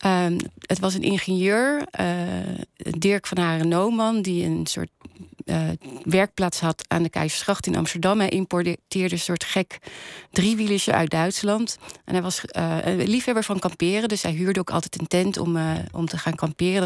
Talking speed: 180 wpm